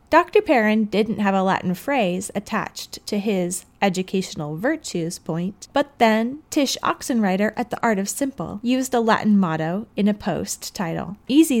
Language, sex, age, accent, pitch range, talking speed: English, female, 30-49, American, 190-245 Hz, 160 wpm